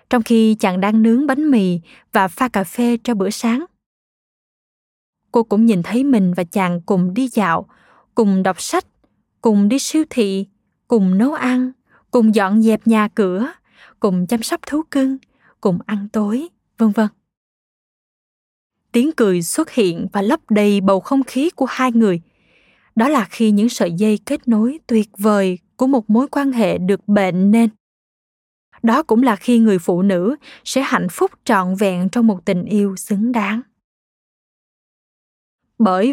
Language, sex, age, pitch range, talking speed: Vietnamese, female, 20-39, 205-255 Hz, 165 wpm